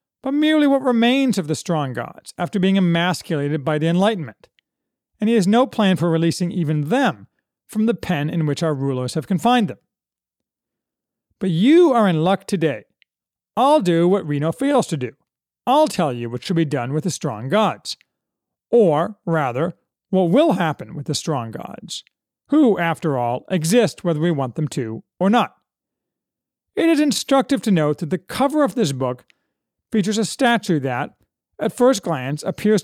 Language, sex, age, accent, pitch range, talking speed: English, male, 40-59, American, 155-220 Hz, 175 wpm